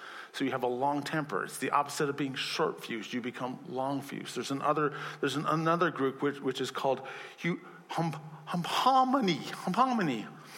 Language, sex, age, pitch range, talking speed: English, male, 40-59, 130-170 Hz, 140 wpm